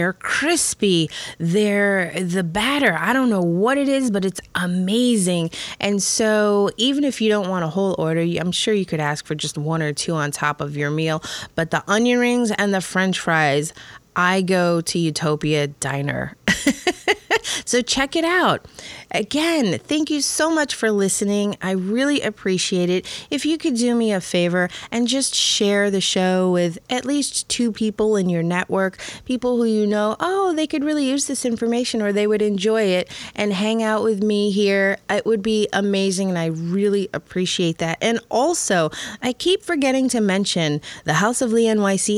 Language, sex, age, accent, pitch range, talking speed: English, female, 30-49, American, 180-250 Hz, 185 wpm